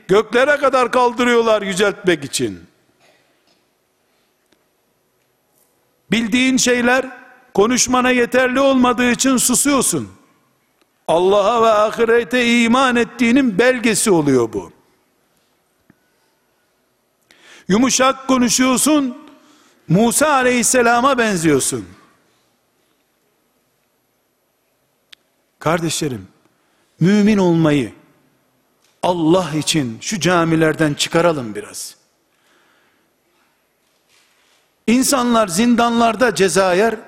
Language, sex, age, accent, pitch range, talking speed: Turkish, male, 60-79, native, 170-255 Hz, 60 wpm